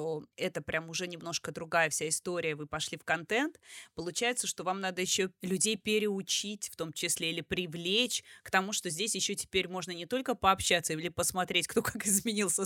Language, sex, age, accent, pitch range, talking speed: Russian, female, 20-39, native, 170-210 Hz, 180 wpm